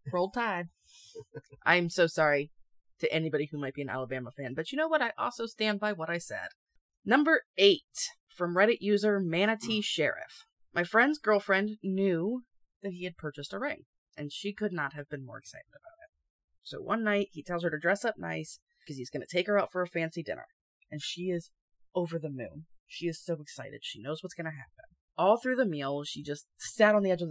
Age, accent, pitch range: 20-39, American, 150-215 Hz